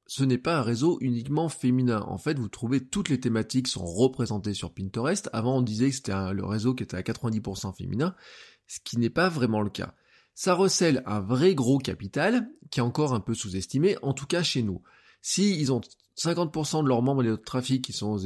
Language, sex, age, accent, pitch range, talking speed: French, male, 20-39, French, 110-150 Hz, 225 wpm